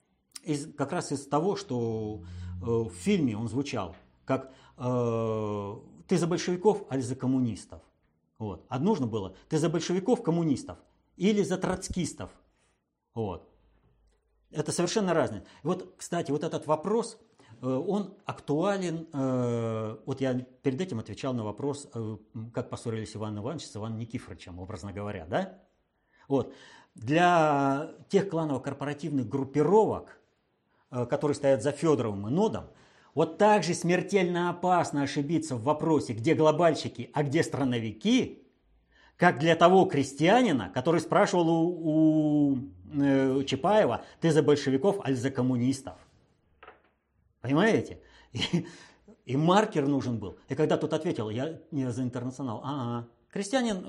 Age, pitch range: 50-69, 120-170 Hz